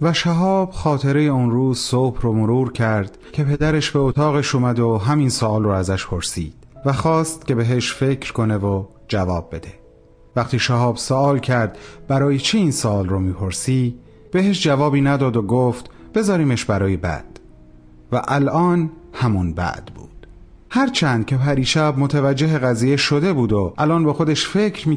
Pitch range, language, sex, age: 115-150 Hz, Persian, male, 40-59